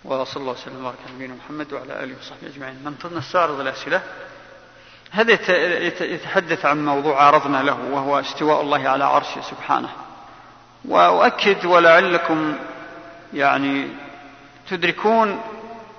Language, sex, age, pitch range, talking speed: Arabic, male, 40-59, 145-170 Hz, 115 wpm